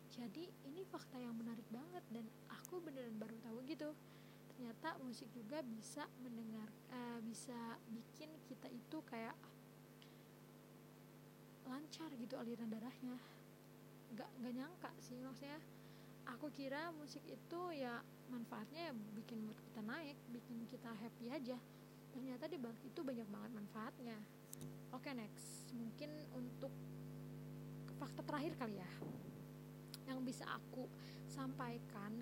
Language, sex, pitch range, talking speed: Indonesian, female, 220-255 Hz, 125 wpm